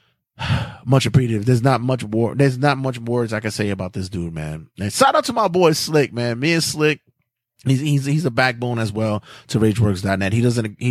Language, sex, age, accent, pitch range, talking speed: English, male, 20-39, American, 100-120 Hz, 220 wpm